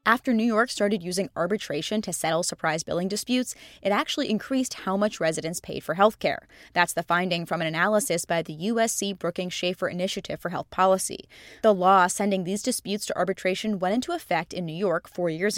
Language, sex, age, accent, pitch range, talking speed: English, female, 20-39, American, 170-220 Hz, 195 wpm